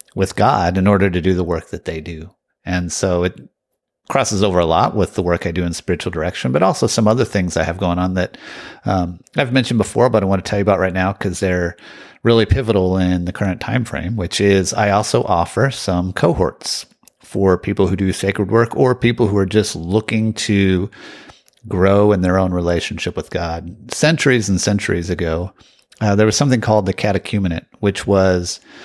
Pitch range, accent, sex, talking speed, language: 90-110 Hz, American, male, 205 wpm, English